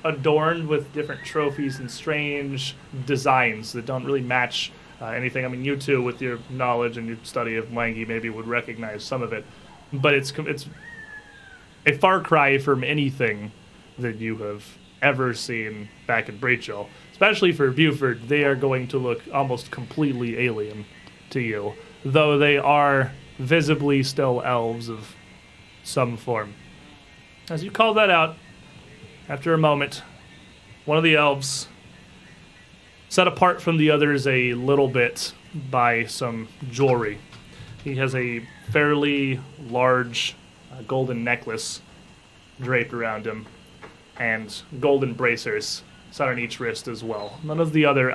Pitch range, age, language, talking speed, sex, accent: 120-145 Hz, 30-49, English, 145 wpm, male, American